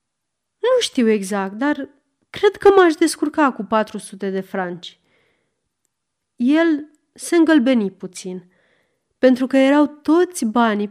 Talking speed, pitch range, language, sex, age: 115 wpm, 200-295 Hz, Romanian, female, 30-49